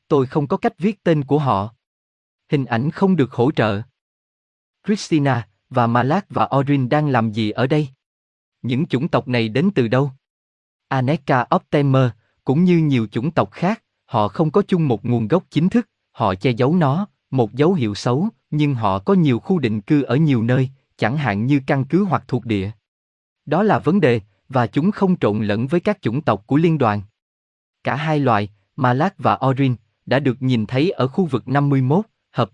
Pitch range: 115-155 Hz